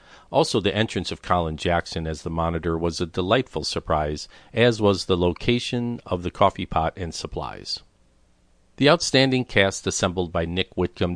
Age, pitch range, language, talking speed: 50-69, 85-105 Hz, English, 160 wpm